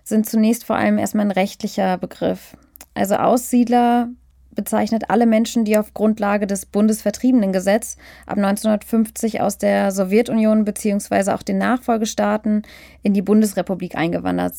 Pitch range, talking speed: 195-225 Hz, 130 wpm